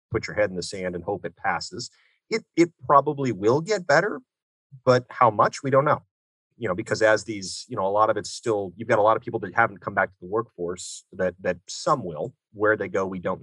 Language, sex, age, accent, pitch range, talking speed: English, male, 30-49, American, 90-120 Hz, 250 wpm